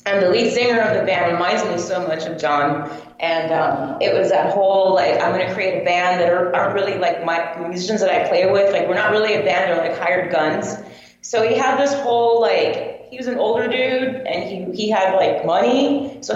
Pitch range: 185-255 Hz